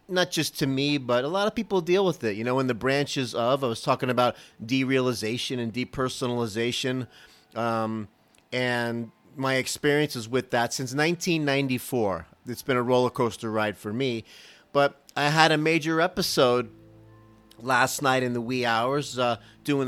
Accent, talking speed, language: American, 165 wpm, English